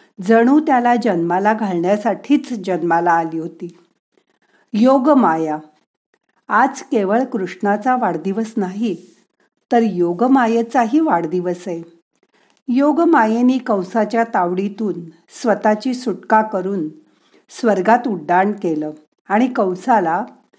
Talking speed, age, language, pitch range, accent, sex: 80 wpm, 50-69, Marathi, 190-250 Hz, native, female